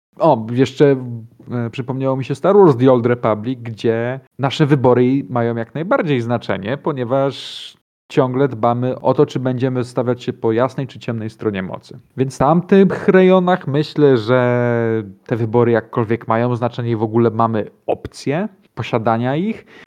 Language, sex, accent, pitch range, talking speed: Polish, male, native, 115-135 Hz, 150 wpm